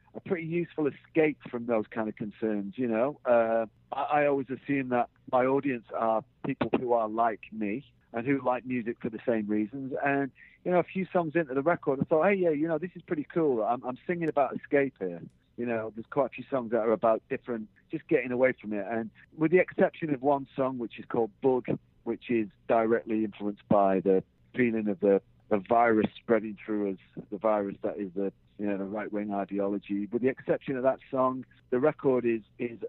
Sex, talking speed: male, 220 wpm